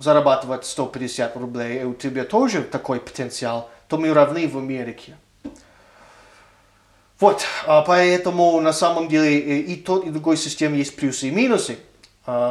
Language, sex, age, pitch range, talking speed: Russian, male, 30-49, 130-165 Hz, 135 wpm